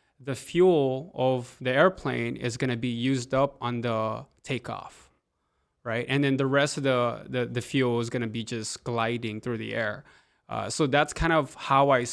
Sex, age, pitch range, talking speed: male, 20-39, 120-145 Hz, 200 wpm